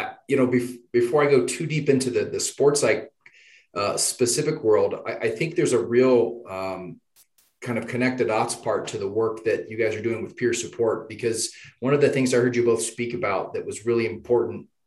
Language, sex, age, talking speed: English, male, 30-49, 210 wpm